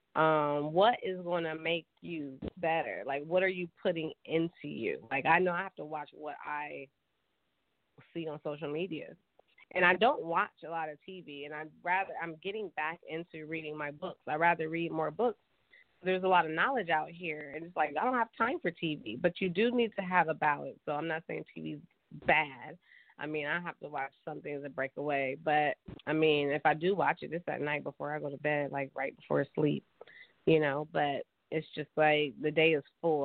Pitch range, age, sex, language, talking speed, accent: 150-175 Hz, 20-39, female, English, 220 wpm, American